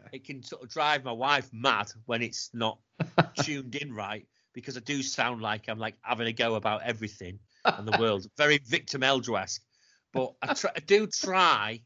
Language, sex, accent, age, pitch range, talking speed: English, male, British, 30-49, 110-130 Hz, 185 wpm